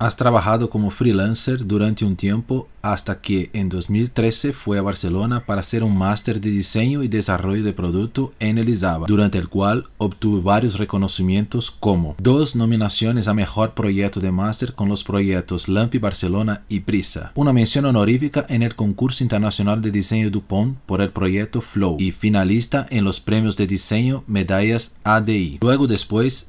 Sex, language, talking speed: male, Portuguese, 165 wpm